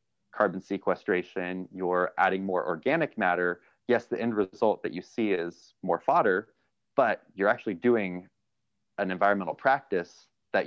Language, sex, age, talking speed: English, male, 30-49, 140 wpm